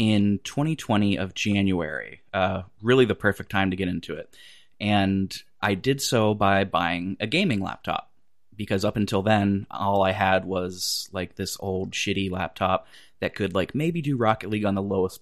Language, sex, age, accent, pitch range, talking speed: English, male, 20-39, American, 95-115 Hz, 180 wpm